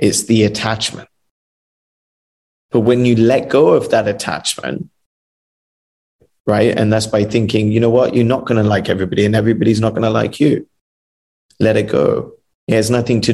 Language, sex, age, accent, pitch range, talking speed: English, male, 20-39, British, 105-125 Hz, 175 wpm